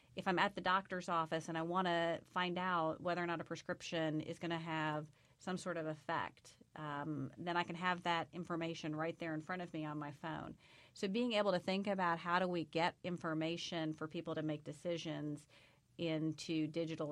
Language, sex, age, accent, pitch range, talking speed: English, female, 40-59, American, 155-175 Hz, 205 wpm